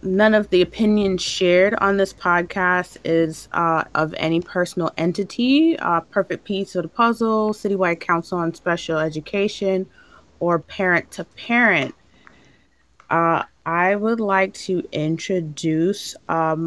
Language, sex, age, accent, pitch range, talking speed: English, female, 20-39, American, 160-205 Hz, 130 wpm